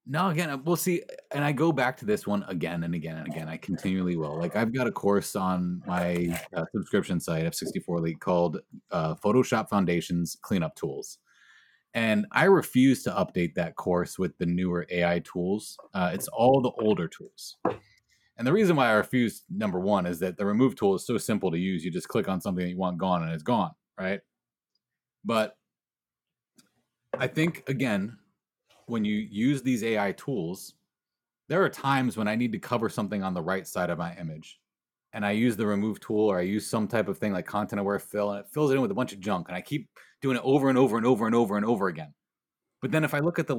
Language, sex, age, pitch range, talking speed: English, male, 30-49, 90-135 Hz, 220 wpm